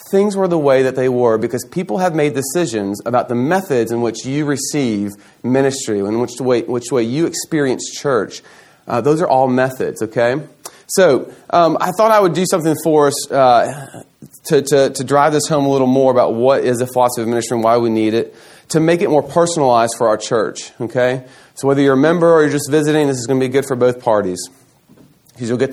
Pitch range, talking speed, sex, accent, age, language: 120-150 Hz, 225 wpm, male, American, 30-49, English